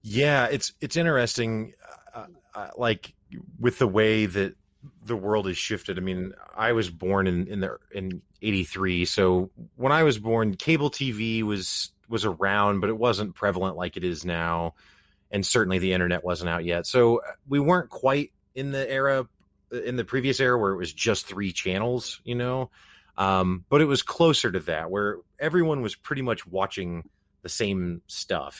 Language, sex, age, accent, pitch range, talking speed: English, male, 30-49, American, 90-120 Hz, 180 wpm